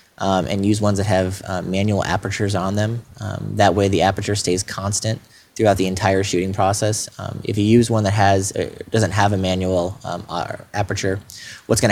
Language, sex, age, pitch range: English, male, 20-39, 95-105 Hz